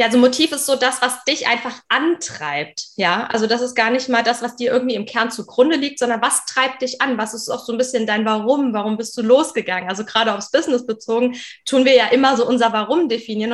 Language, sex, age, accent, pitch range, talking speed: German, female, 20-39, German, 210-255 Hz, 245 wpm